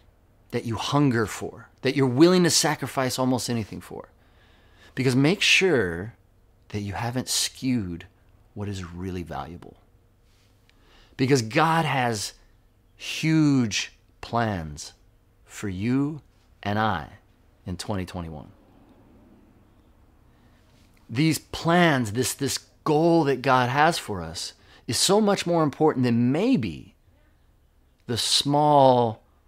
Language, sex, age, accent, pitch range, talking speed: English, male, 40-59, American, 95-130 Hz, 110 wpm